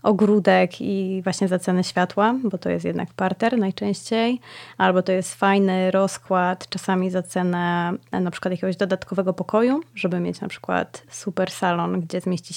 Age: 20-39